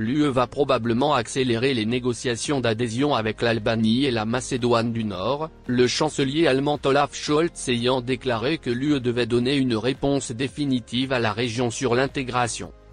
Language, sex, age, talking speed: French, male, 30-49, 155 wpm